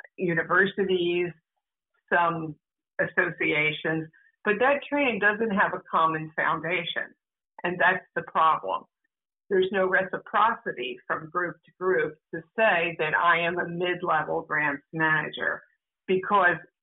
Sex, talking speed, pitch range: female, 115 wpm, 165-210 Hz